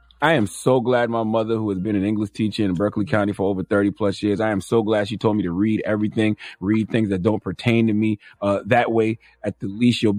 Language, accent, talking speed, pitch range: English, American, 260 wpm, 105-125 Hz